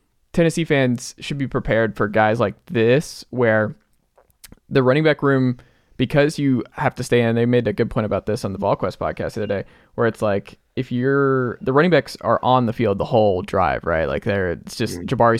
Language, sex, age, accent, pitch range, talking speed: English, male, 20-39, American, 110-130 Hz, 220 wpm